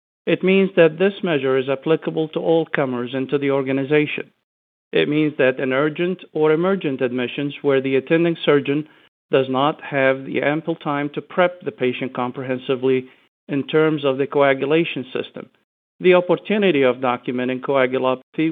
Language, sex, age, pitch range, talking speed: English, male, 50-69, 130-160 Hz, 150 wpm